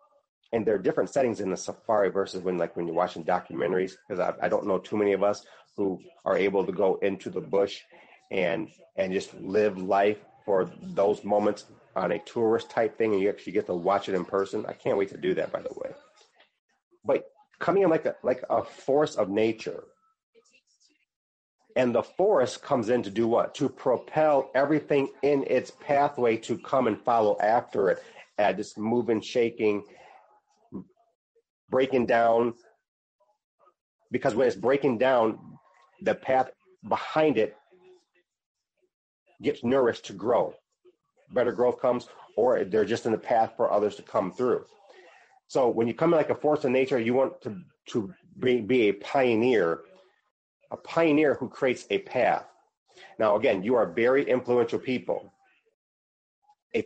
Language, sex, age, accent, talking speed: English, male, 30-49, American, 165 wpm